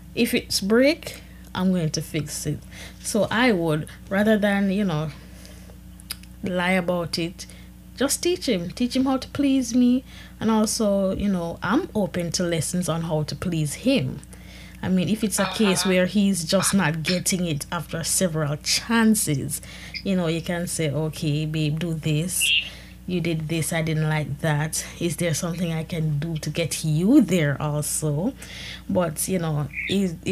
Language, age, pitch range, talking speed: English, 20-39, 160-215 Hz, 170 wpm